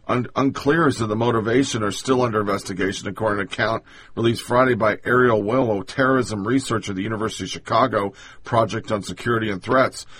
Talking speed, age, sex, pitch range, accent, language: 180 wpm, 50-69, male, 105-125 Hz, American, English